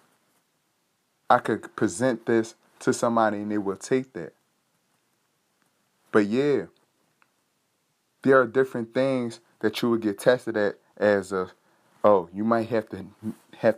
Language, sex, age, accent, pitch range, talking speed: English, male, 30-49, American, 110-135 Hz, 125 wpm